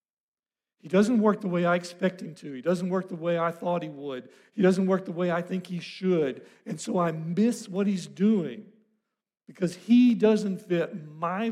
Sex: male